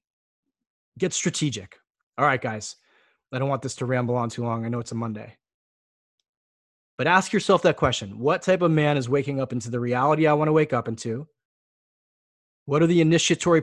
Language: English